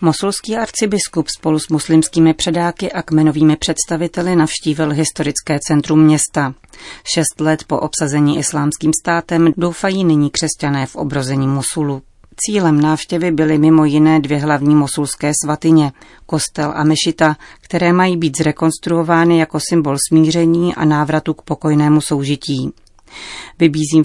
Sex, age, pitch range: female, 30-49, 145-165 Hz